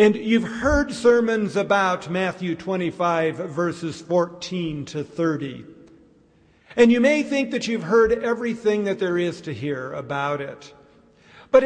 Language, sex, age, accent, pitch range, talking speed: English, male, 50-69, American, 185-255 Hz, 140 wpm